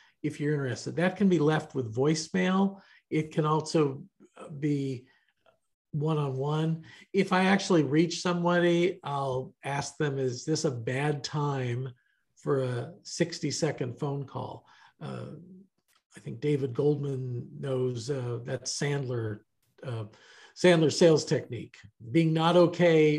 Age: 50-69